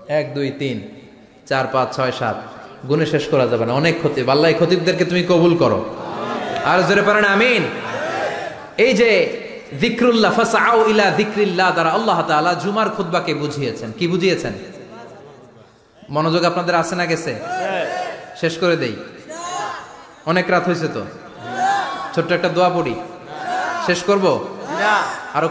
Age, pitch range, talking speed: 30-49, 165-230 Hz, 85 wpm